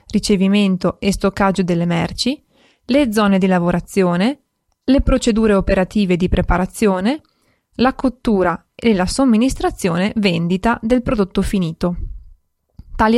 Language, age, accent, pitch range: Italian, 20-39, native, 190-245 Hz